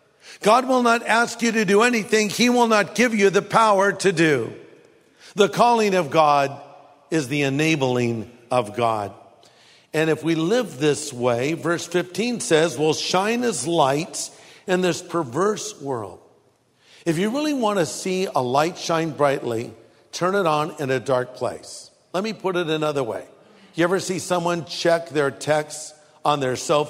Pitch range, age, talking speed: 150-205 Hz, 50-69, 170 wpm